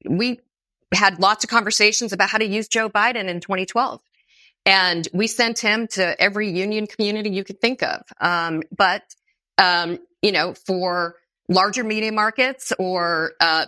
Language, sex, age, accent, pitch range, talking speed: English, female, 40-59, American, 165-220 Hz, 160 wpm